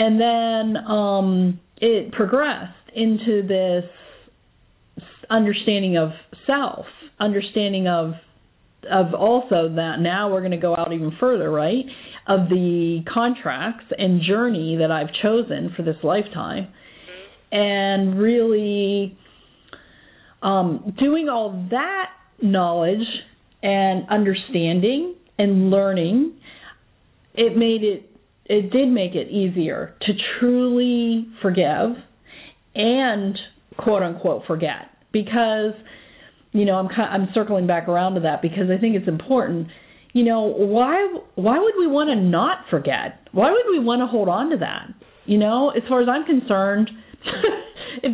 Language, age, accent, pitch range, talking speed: English, 40-59, American, 190-245 Hz, 130 wpm